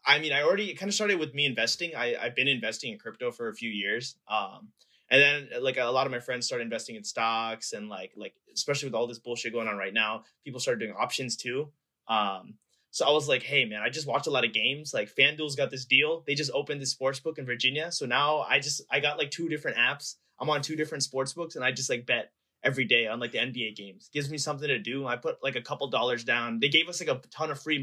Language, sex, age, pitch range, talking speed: English, male, 20-39, 125-165 Hz, 265 wpm